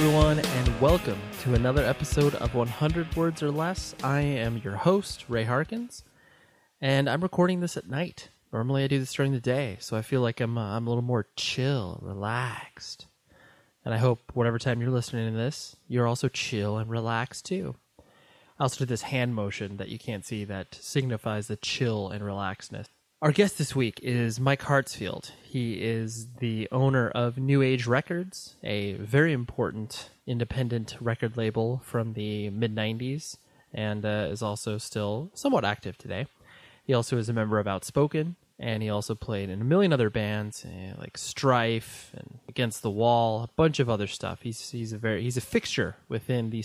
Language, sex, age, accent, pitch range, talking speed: English, male, 20-39, American, 110-135 Hz, 180 wpm